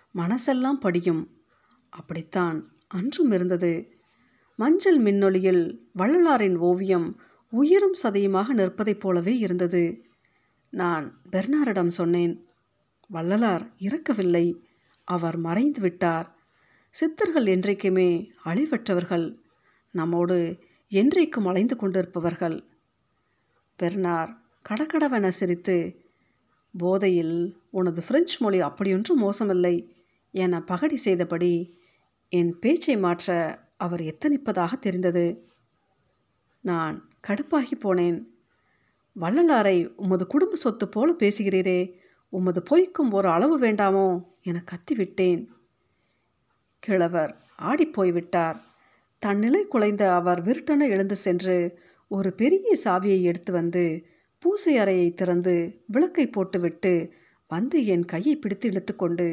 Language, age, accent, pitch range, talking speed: Tamil, 50-69, native, 175-225 Hz, 85 wpm